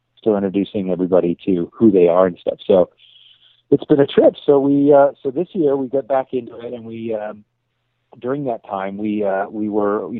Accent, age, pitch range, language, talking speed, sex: American, 30-49, 90-120 Hz, English, 210 wpm, male